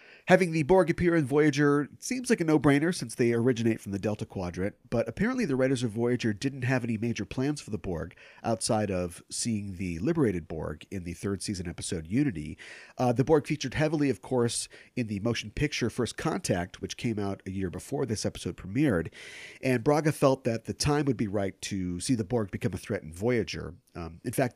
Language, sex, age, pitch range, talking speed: English, male, 40-59, 95-130 Hz, 210 wpm